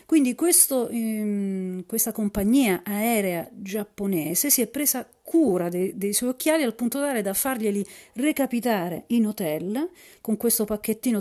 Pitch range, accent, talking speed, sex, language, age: 185-235 Hz, native, 130 wpm, female, Italian, 40-59